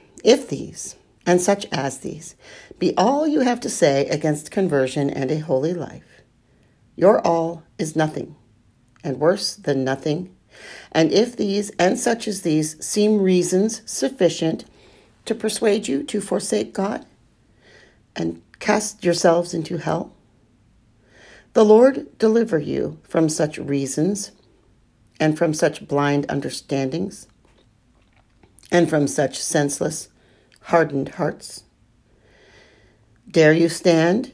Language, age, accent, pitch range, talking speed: English, 50-69, American, 140-200 Hz, 120 wpm